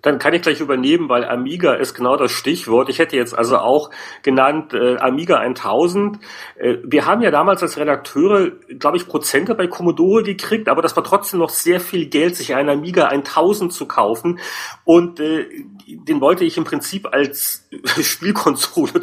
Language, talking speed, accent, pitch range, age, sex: German, 175 wpm, German, 130-190 Hz, 40-59, male